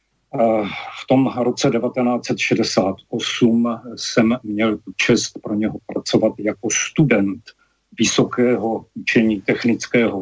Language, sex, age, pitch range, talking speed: Slovak, male, 40-59, 105-120 Hz, 90 wpm